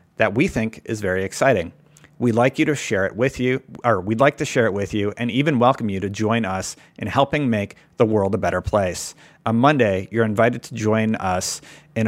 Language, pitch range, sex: English, 100-130 Hz, male